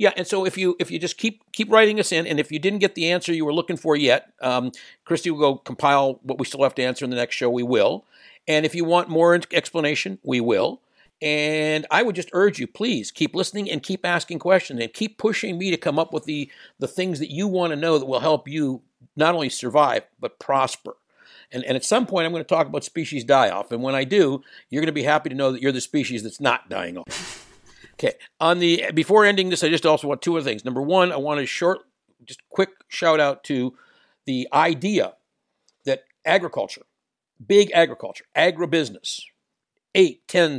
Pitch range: 140-175 Hz